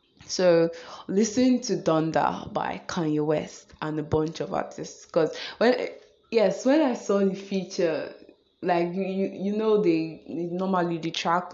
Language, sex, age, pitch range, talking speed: English, female, 20-39, 160-200 Hz, 145 wpm